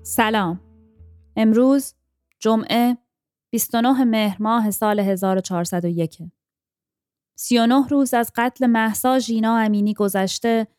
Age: 20-39